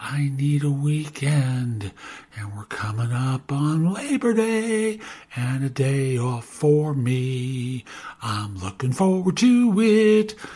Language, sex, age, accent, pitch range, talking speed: English, male, 60-79, American, 125-150 Hz, 125 wpm